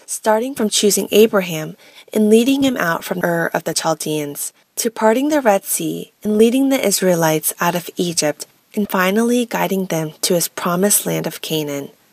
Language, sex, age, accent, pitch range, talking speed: English, female, 20-39, American, 170-225 Hz, 175 wpm